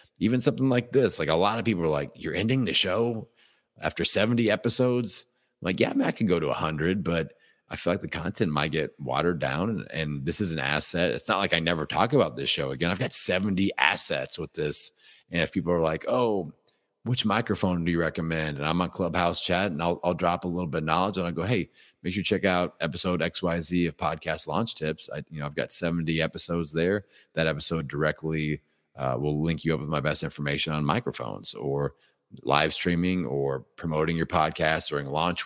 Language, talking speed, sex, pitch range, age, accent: English, 220 wpm, male, 80-100 Hz, 30-49, American